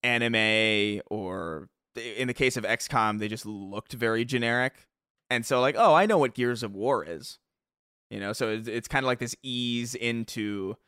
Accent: American